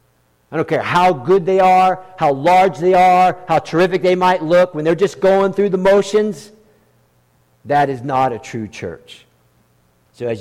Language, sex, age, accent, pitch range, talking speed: English, male, 50-69, American, 125-190 Hz, 180 wpm